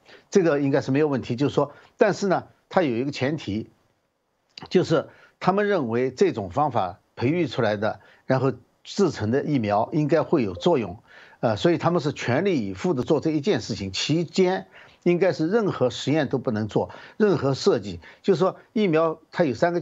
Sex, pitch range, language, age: male, 120-170 Hz, Chinese, 60-79